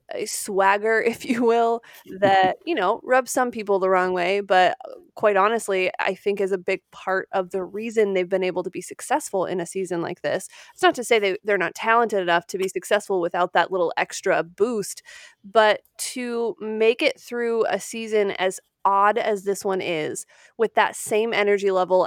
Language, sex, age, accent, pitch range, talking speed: English, female, 20-39, American, 190-235 Hz, 190 wpm